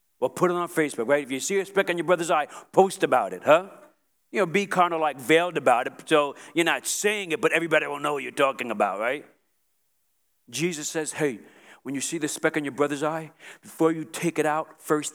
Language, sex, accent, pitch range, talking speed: English, male, American, 150-200 Hz, 240 wpm